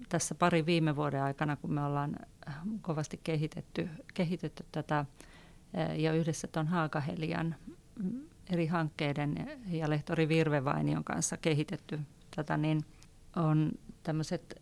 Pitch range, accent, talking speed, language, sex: 150-170 Hz, native, 110 wpm, Finnish, female